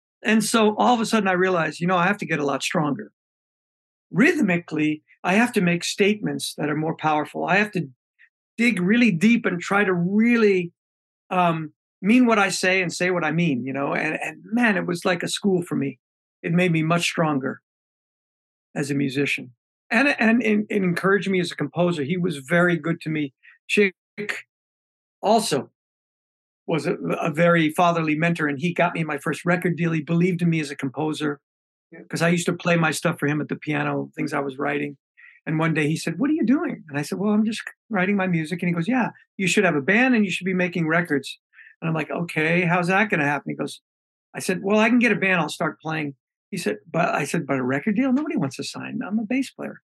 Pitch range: 150-205 Hz